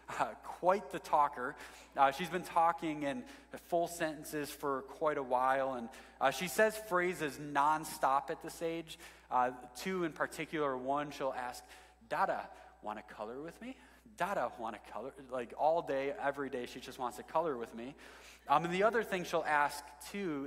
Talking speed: 180 wpm